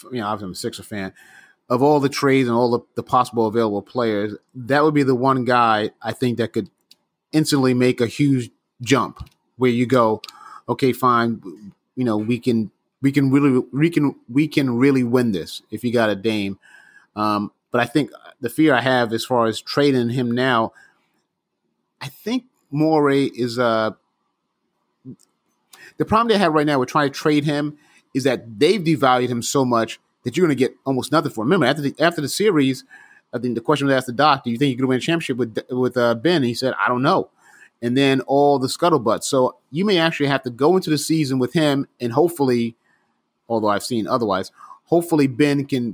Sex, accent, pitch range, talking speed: male, American, 120-145 Hz, 210 wpm